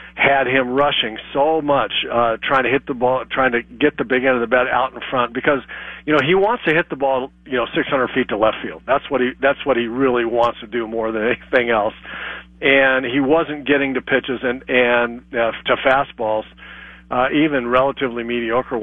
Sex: male